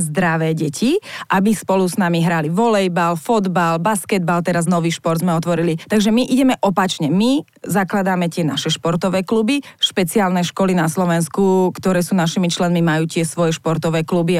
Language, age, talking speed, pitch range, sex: Slovak, 30-49, 160 wpm, 170-200 Hz, female